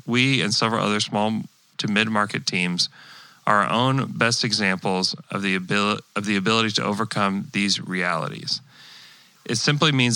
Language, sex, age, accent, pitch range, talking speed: English, male, 30-49, American, 115-150 Hz, 140 wpm